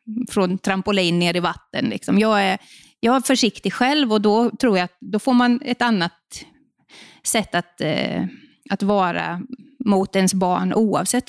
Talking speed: 160 wpm